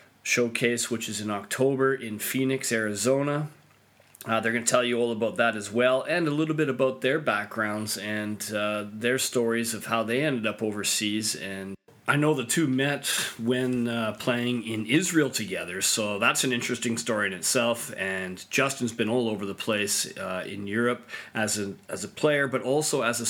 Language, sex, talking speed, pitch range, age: English, male, 190 wpm, 110-125 Hz, 30-49